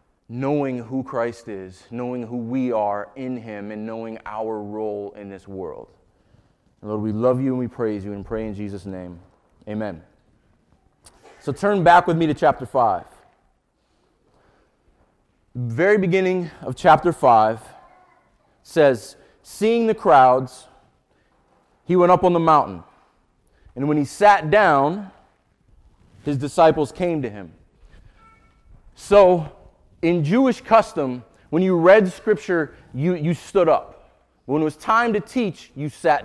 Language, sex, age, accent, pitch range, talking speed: English, male, 30-49, American, 110-175 Hz, 140 wpm